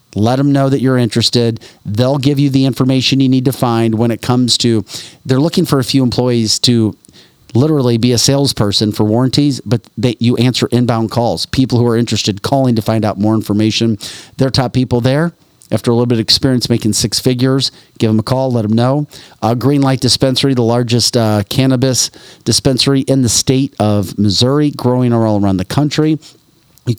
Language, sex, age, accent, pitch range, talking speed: English, male, 40-59, American, 105-130 Hz, 195 wpm